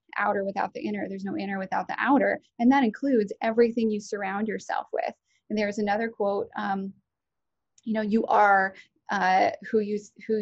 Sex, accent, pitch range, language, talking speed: female, American, 205-240 Hz, English, 180 wpm